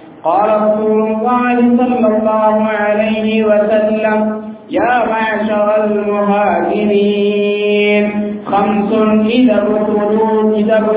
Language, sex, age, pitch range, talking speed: English, male, 50-69, 205-220 Hz, 70 wpm